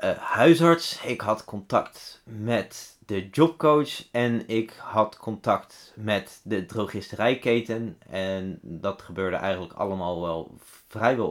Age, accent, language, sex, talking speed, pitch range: 30-49, Dutch, Dutch, male, 115 wpm, 95-120 Hz